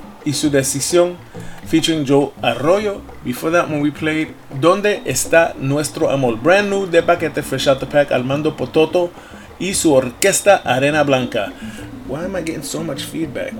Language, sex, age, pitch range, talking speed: English, male, 30-49, 130-160 Hz, 165 wpm